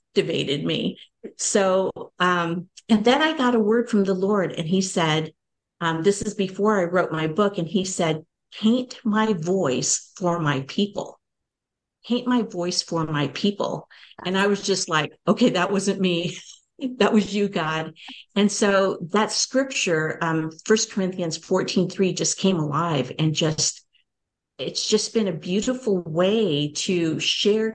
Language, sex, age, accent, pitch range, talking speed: English, female, 50-69, American, 165-205 Hz, 160 wpm